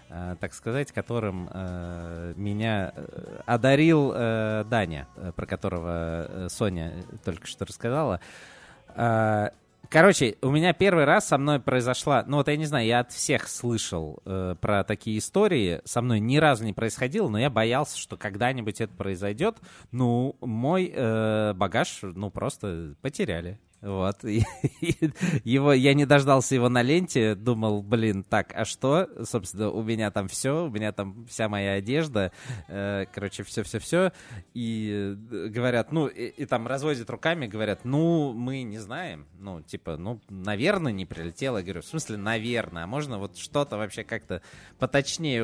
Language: Russian